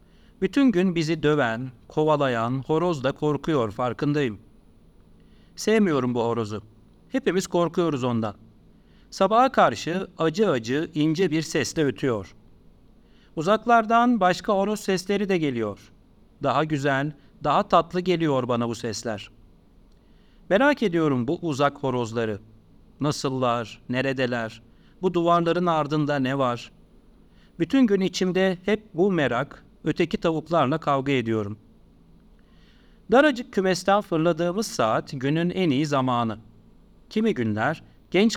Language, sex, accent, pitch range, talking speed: Turkish, male, native, 115-185 Hz, 110 wpm